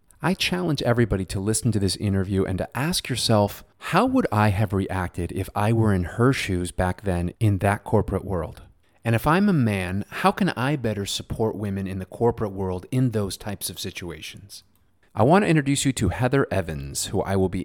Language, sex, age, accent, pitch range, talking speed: English, male, 30-49, American, 95-120 Hz, 205 wpm